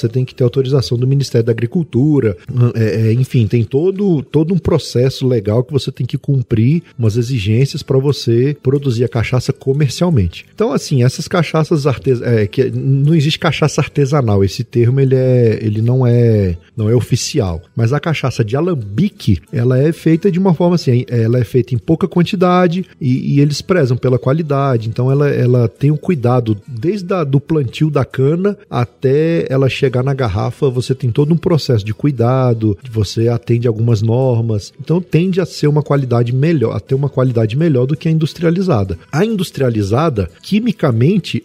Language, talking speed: Portuguese, 175 wpm